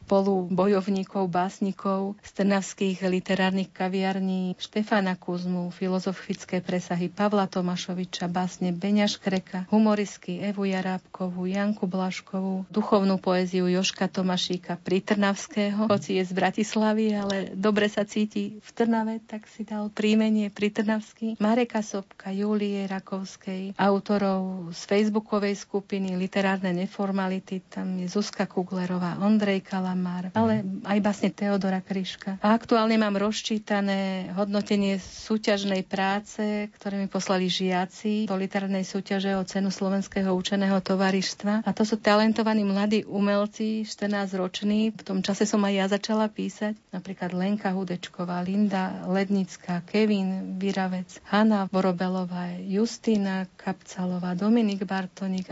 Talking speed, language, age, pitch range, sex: 115 wpm, Slovak, 40-59, 185-210 Hz, female